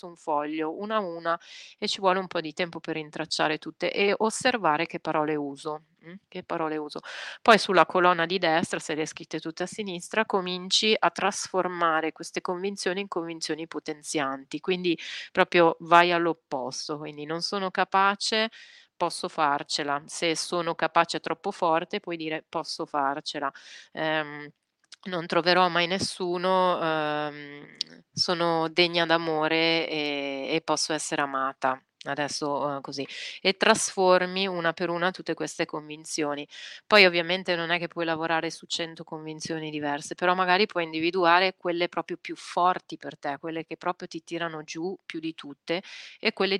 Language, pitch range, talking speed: Italian, 155-180 Hz, 150 wpm